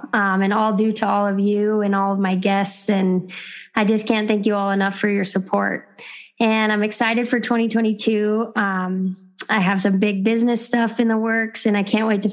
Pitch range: 195-220 Hz